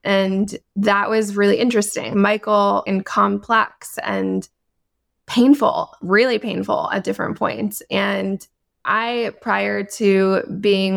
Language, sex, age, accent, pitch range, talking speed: English, female, 20-39, American, 190-215 Hz, 110 wpm